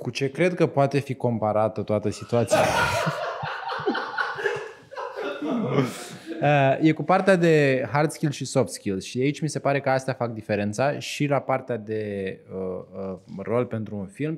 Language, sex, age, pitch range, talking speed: Romanian, male, 20-39, 110-145 Hz, 165 wpm